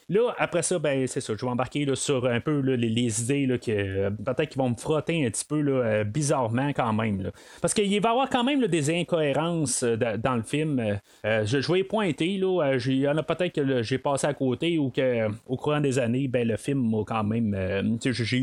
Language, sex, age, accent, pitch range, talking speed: French, male, 30-49, Canadian, 115-155 Hz, 255 wpm